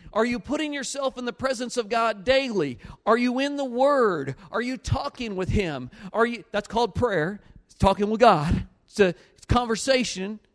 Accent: American